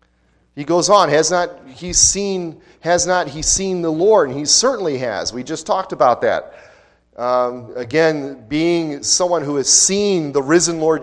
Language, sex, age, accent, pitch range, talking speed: English, male, 40-59, American, 125-165 Hz, 175 wpm